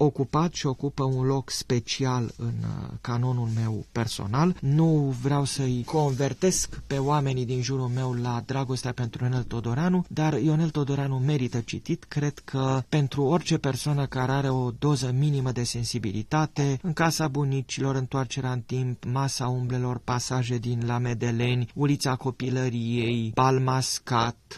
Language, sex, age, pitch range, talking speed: Romanian, male, 30-49, 125-155 Hz, 135 wpm